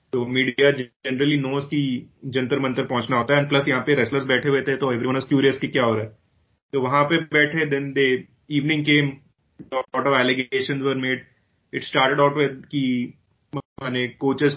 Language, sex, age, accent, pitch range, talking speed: Hindi, male, 30-49, native, 125-145 Hz, 130 wpm